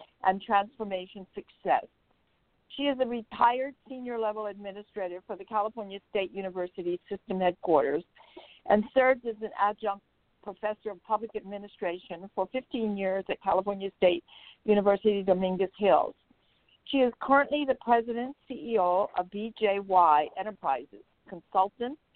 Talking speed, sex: 120 wpm, female